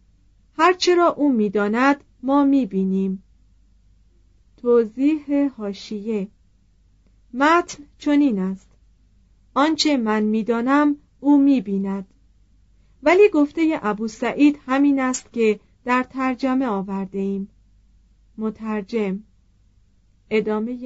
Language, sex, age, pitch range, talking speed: Persian, female, 40-59, 195-270 Hz, 85 wpm